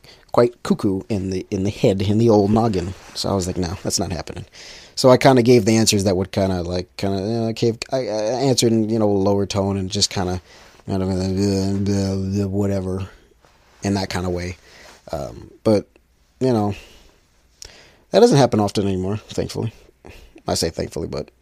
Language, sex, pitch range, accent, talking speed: English, male, 95-115 Hz, American, 185 wpm